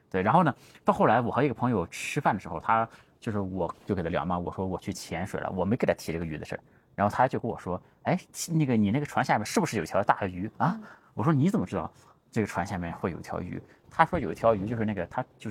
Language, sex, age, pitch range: Chinese, male, 30-49, 100-130 Hz